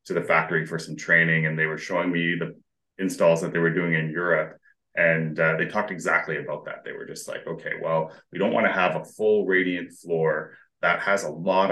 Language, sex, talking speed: English, male, 230 wpm